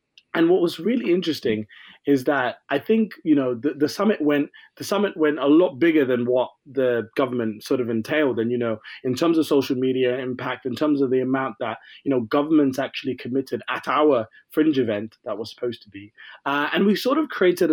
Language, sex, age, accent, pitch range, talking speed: English, male, 20-39, British, 120-155 Hz, 215 wpm